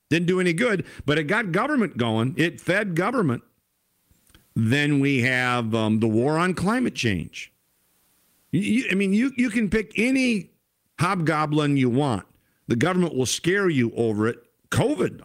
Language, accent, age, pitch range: English, American, 50-69, 110-160 Hz